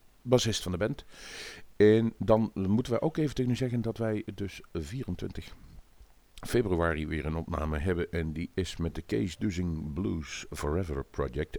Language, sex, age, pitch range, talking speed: Dutch, male, 50-69, 80-105 Hz, 165 wpm